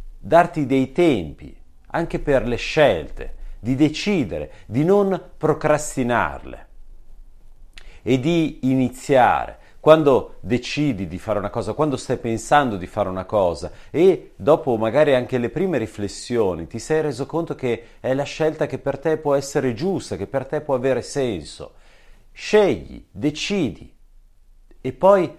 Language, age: Italian, 40-59